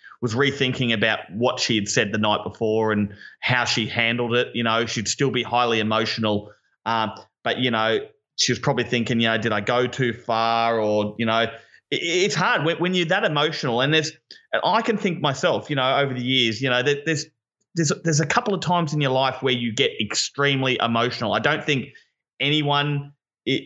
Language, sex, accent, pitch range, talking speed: English, male, Australian, 115-140 Hz, 215 wpm